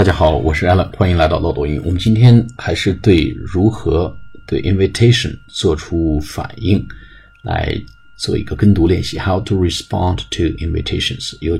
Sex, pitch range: male, 85-110 Hz